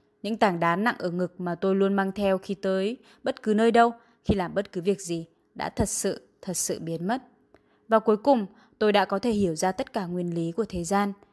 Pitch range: 170-215 Hz